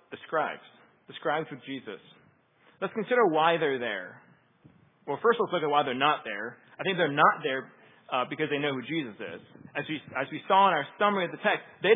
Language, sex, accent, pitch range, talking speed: English, male, American, 150-200 Hz, 230 wpm